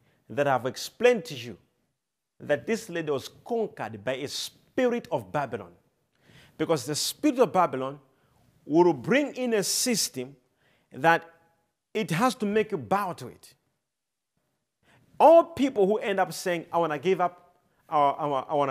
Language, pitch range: English, 150-220 Hz